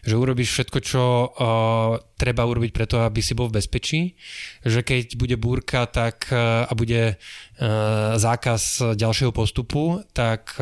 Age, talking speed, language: 20-39, 145 wpm, Slovak